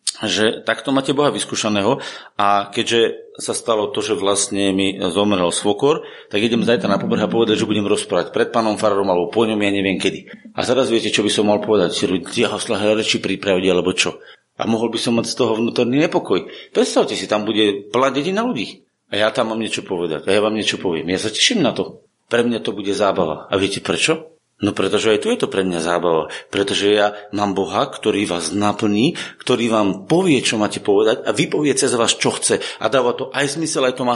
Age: 30-49